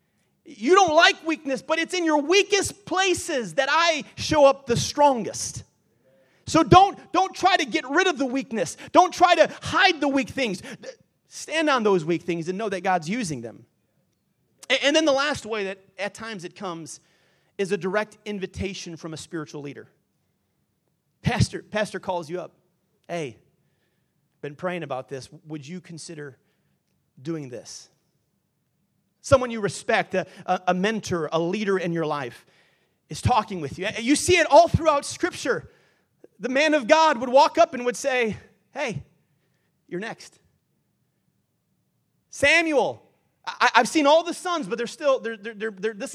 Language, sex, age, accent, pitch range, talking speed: English, male, 30-49, American, 175-290 Hz, 160 wpm